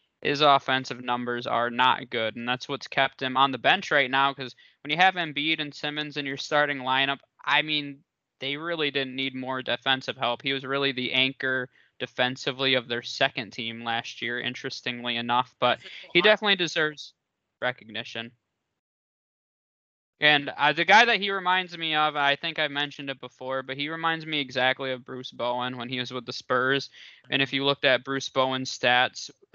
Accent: American